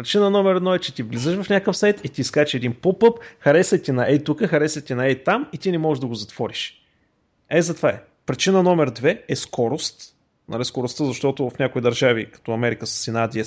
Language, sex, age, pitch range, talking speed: Bulgarian, male, 30-49, 125-175 Hz, 225 wpm